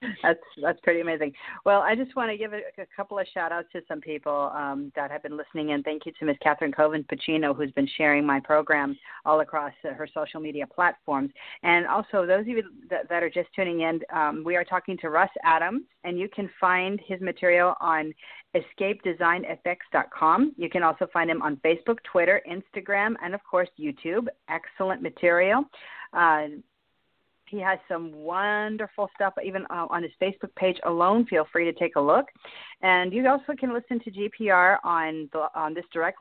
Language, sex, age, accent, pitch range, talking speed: English, female, 40-59, American, 160-215 Hz, 190 wpm